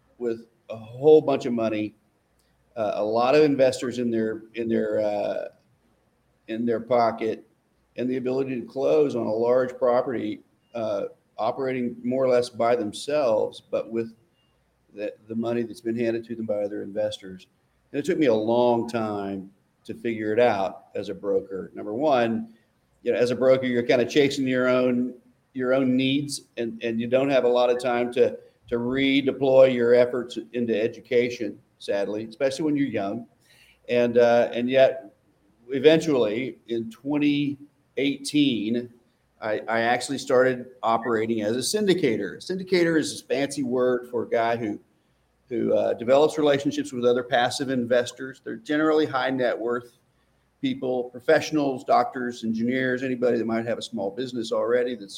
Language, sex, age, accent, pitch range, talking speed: English, male, 50-69, American, 115-135 Hz, 160 wpm